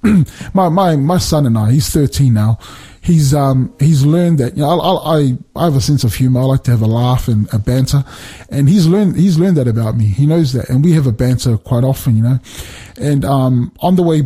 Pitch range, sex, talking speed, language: 120-155 Hz, male, 245 wpm, English